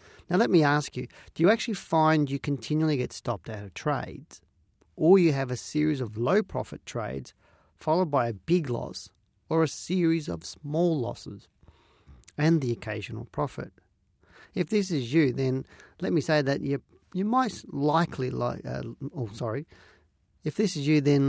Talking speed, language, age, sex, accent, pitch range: 175 wpm, English, 40-59, male, Australian, 115-155 Hz